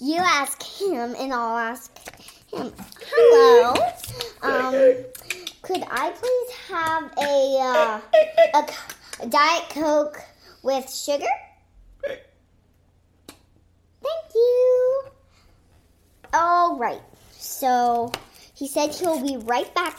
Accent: American